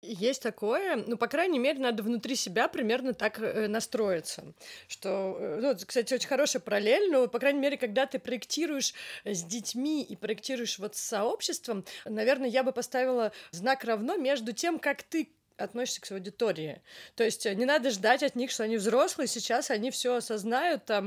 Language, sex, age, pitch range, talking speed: Russian, female, 30-49, 210-265 Hz, 175 wpm